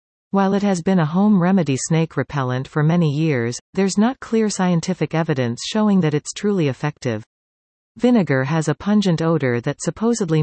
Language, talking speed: English, 165 wpm